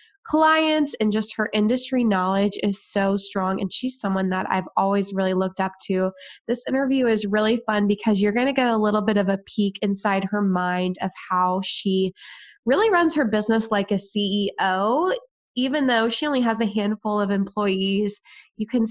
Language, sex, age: English, female, 20-39